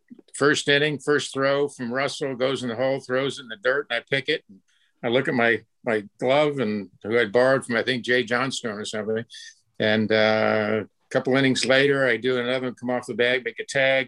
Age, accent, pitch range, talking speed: 50-69, American, 115-135 Hz, 225 wpm